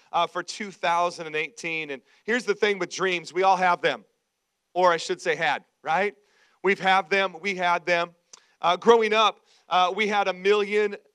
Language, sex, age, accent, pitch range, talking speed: English, male, 40-59, American, 175-215 Hz, 180 wpm